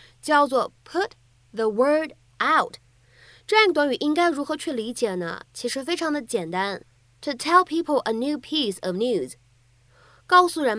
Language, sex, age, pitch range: Chinese, female, 20-39, 190-290 Hz